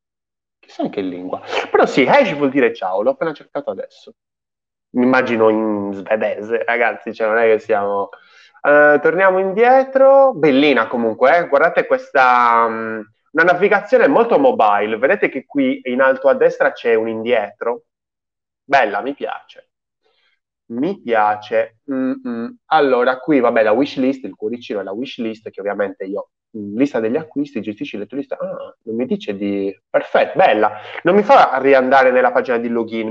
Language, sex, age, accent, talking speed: Italian, male, 20-39, native, 155 wpm